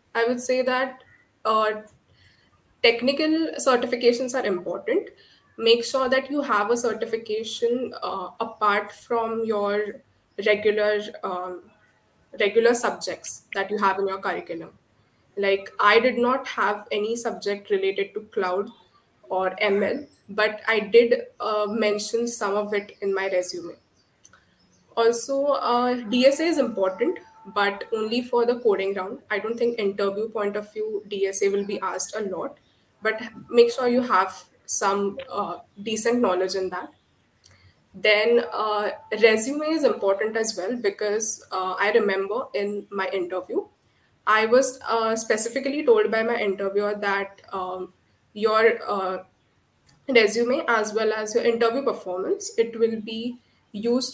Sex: female